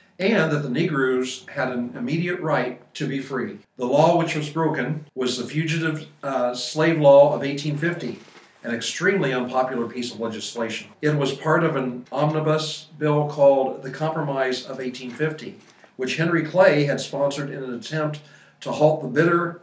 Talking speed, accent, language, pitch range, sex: 165 wpm, American, English, 130-160 Hz, male